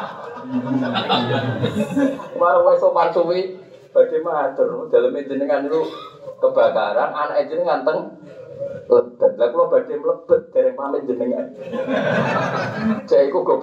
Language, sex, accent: Indonesian, male, native